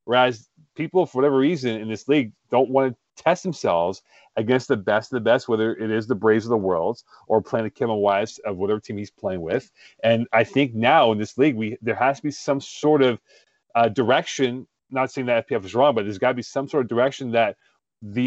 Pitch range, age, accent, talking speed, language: 115-150 Hz, 30-49, American, 235 wpm, English